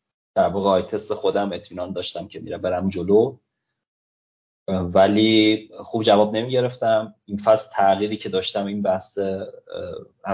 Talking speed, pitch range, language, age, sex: 130 wpm, 100-125 Hz, Persian, 30-49, male